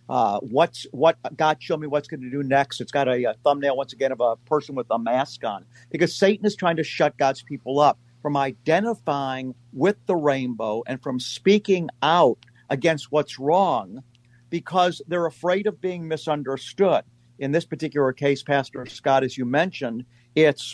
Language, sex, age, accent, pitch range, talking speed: English, male, 50-69, American, 130-160 Hz, 180 wpm